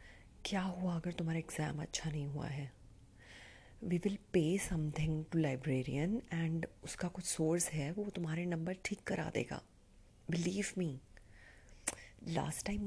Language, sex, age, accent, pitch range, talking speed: Hindi, female, 30-49, native, 115-185 Hz, 140 wpm